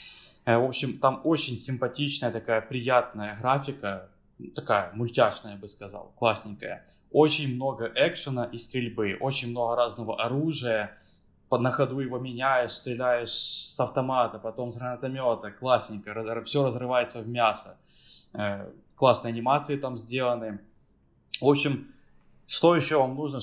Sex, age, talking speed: male, 20-39, 125 wpm